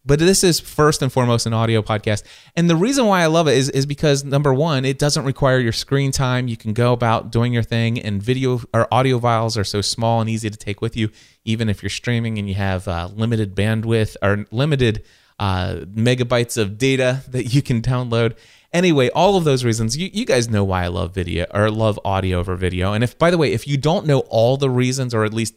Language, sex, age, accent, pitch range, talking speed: English, male, 30-49, American, 100-130 Hz, 235 wpm